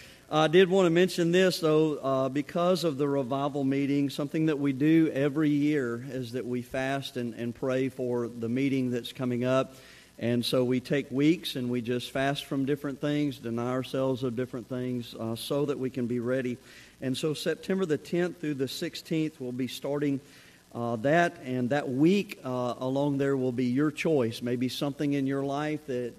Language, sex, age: English, male, 50-69